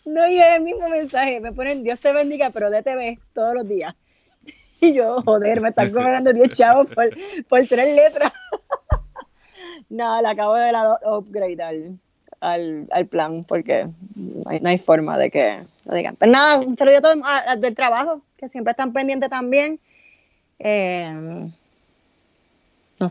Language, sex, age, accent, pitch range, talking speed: English, female, 30-49, American, 185-250 Hz, 170 wpm